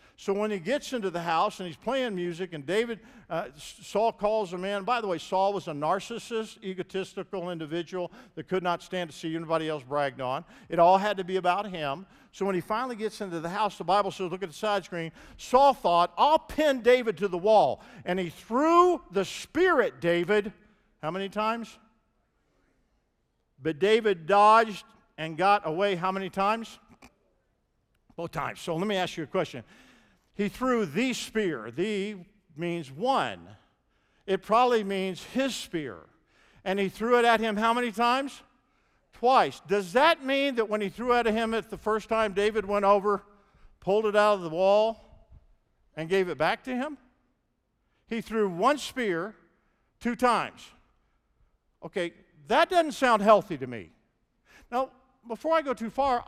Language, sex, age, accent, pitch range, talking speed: English, male, 50-69, American, 180-235 Hz, 175 wpm